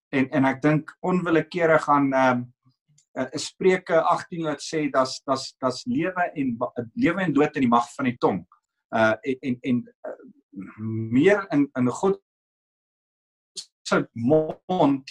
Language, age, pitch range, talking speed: English, 50-69, 130-185 Hz, 135 wpm